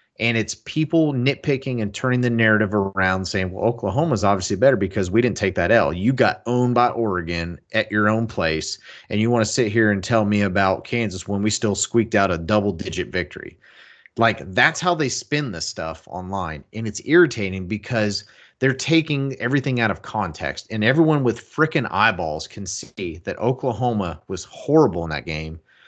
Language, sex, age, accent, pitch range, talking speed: English, male, 30-49, American, 100-125 Hz, 185 wpm